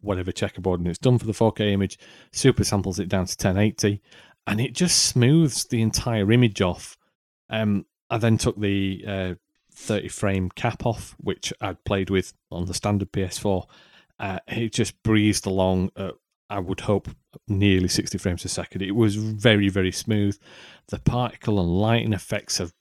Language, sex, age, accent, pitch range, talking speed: English, male, 30-49, British, 95-115 Hz, 170 wpm